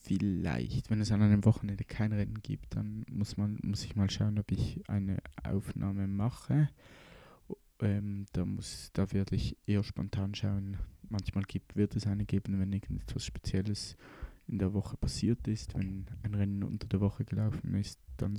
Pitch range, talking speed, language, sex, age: 95-110 Hz, 165 wpm, German, male, 20-39